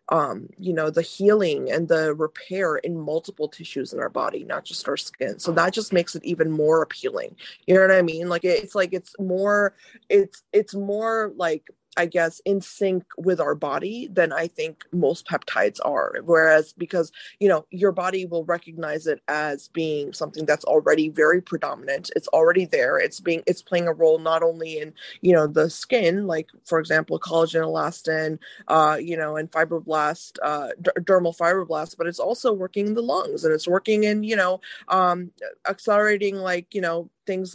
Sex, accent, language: female, American, English